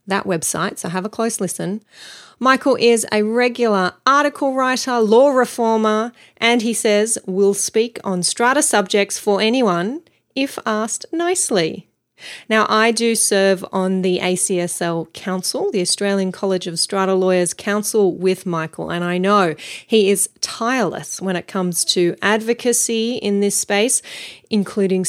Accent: Australian